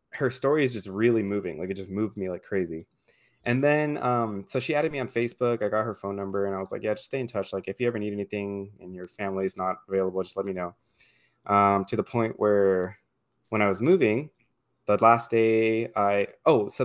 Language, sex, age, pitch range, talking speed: English, male, 20-39, 95-115 Hz, 240 wpm